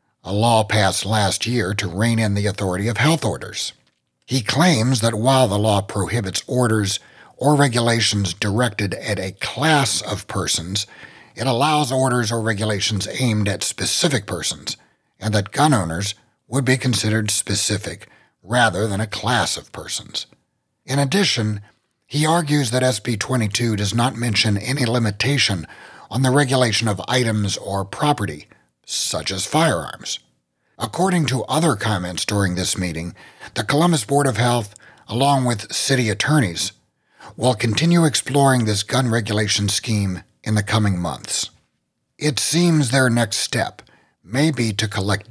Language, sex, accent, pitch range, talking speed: English, male, American, 100-130 Hz, 145 wpm